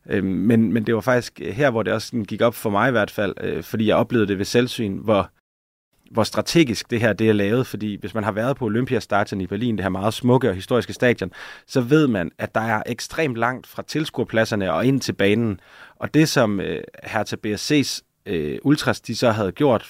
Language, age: Danish, 30-49